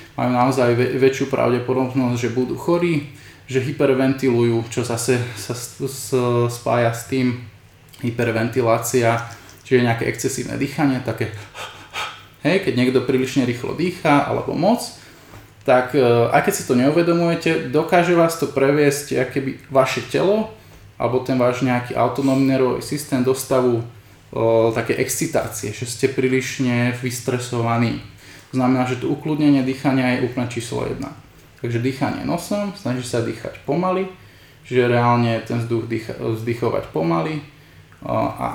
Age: 20-39